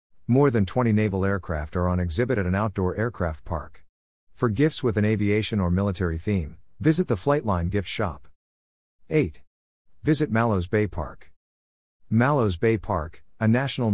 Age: 50-69